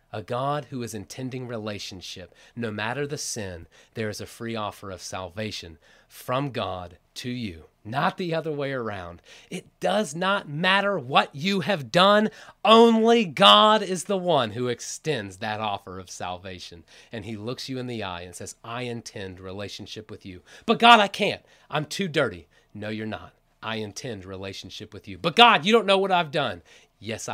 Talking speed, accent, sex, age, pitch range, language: 180 wpm, American, male, 30-49, 95-150 Hz, English